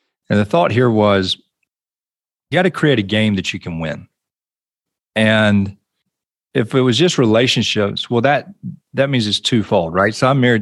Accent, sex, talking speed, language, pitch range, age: American, male, 175 wpm, English, 100-130 Hz, 40-59